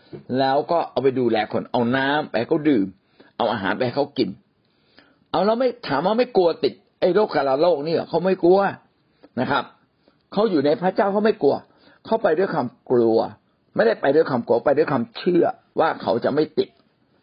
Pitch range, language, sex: 130-215 Hz, Thai, male